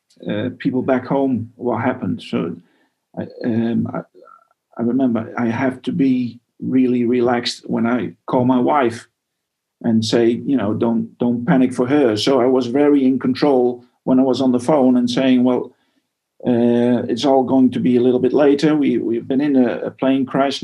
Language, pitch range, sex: English, 125-145 Hz, male